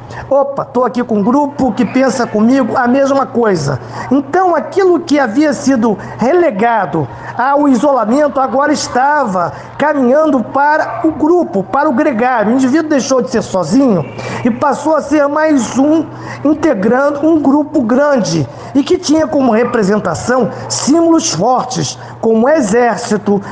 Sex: male